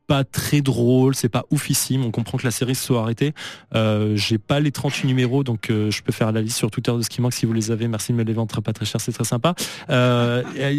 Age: 20-39